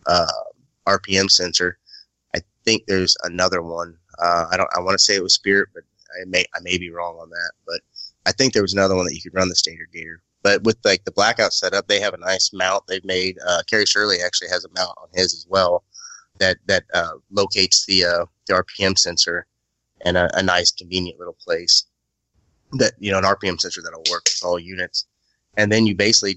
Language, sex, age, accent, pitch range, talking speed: English, male, 30-49, American, 90-100 Hz, 220 wpm